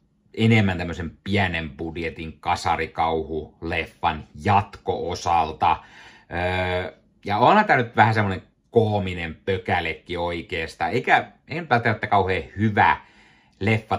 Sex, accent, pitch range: male, native, 85-110 Hz